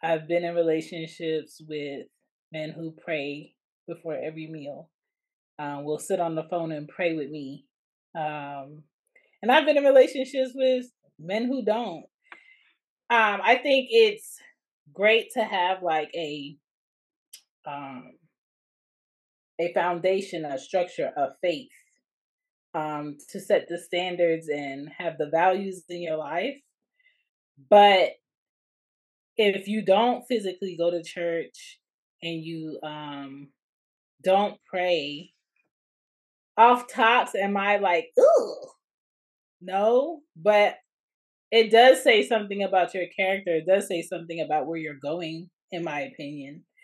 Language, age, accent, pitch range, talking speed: English, 30-49, American, 155-210 Hz, 125 wpm